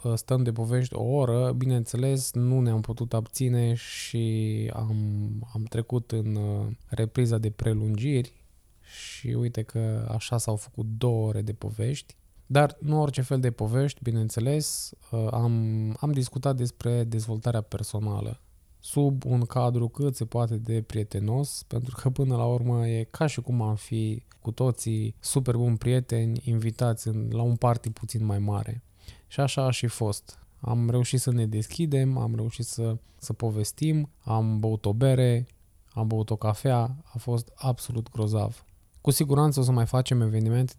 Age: 20-39